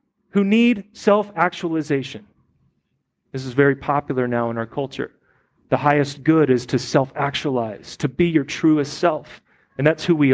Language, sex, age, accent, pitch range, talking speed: English, male, 30-49, American, 140-200 Hz, 150 wpm